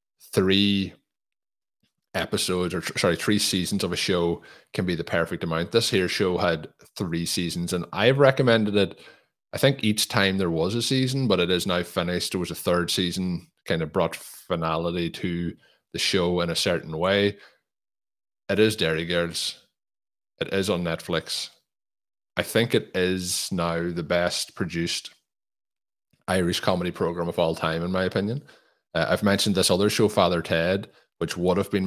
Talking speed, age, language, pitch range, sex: 170 wpm, 20-39, English, 85-105 Hz, male